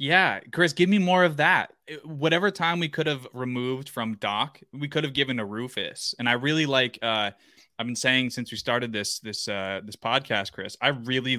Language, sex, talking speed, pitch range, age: English, male, 200 wpm, 110-140 Hz, 20-39